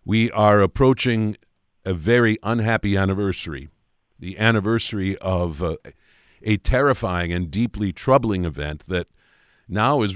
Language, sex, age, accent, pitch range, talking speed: English, male, 50-69, American, 90-115 Hz, 120 wpm